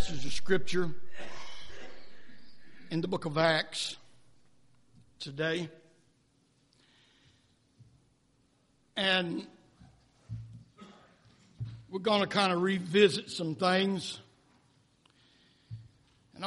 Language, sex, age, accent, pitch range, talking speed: English, male, 60-79, American, 135-195 Hz, 65 wpm